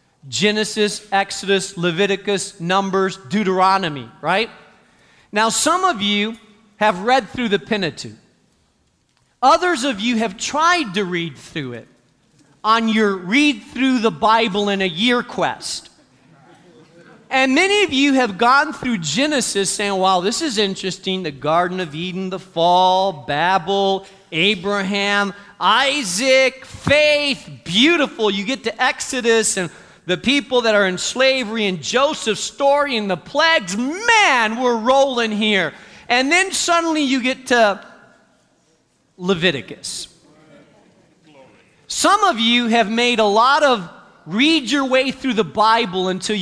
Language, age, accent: English, 40-59, American